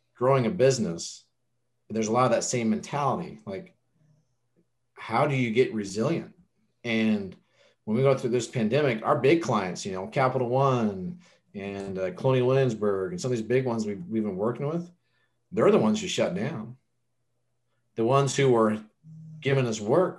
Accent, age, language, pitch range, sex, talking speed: American, 40-59, English, 110-135 Hz, male, 170 wpm